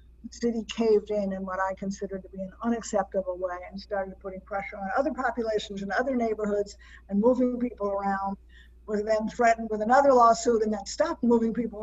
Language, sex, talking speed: English, female, 190 wpm